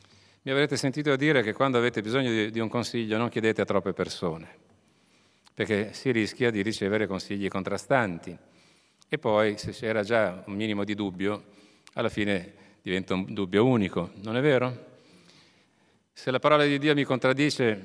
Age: 40-59